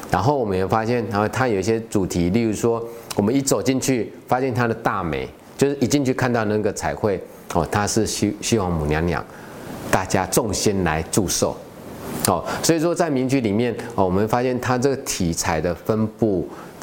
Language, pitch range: Chinese, 95-125 Hz